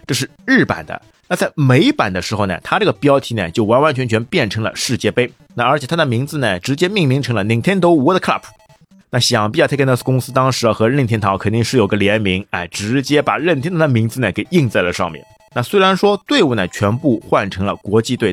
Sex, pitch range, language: male, 100-145 Hz, Chinese